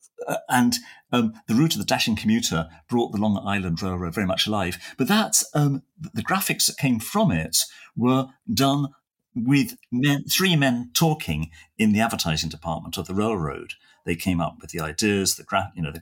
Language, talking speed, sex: English, 190 wpm, male